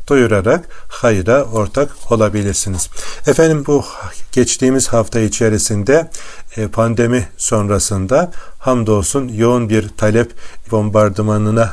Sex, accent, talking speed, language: male, native, 75 wpm, Turkish